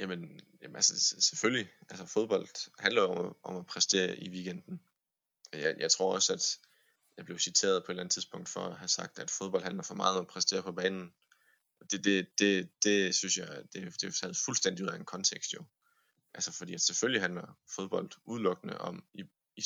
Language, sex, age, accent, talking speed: Danish, male, 20-39, native, 205 wpm